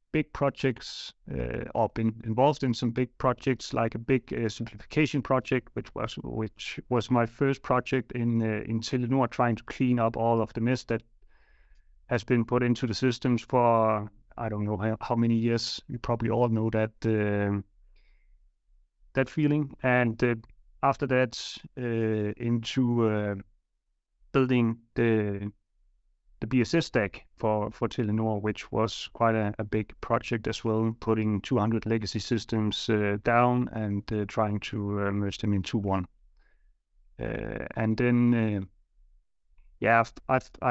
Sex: male